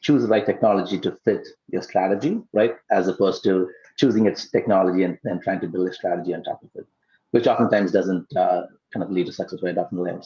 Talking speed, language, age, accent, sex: 215 wpm, English, 30-49, Indian, male